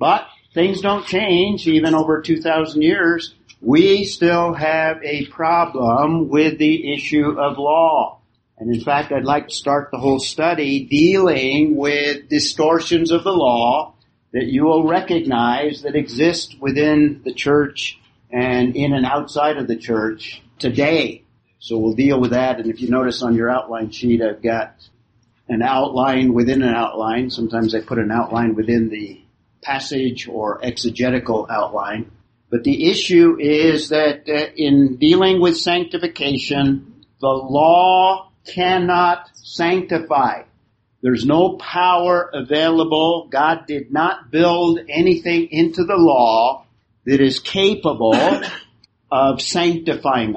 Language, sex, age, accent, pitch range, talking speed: English, male, 50-69, American, 120-165 Hz, 135 wpm